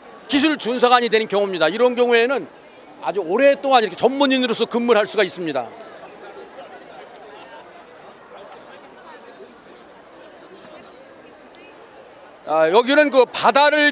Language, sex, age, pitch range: Korean, male, 40-59, 230-275 Hz